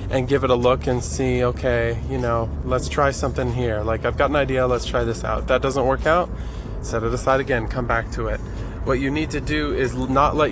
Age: 20-39